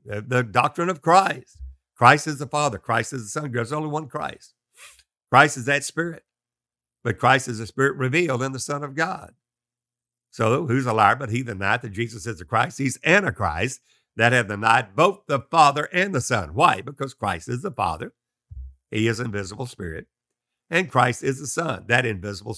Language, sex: English, male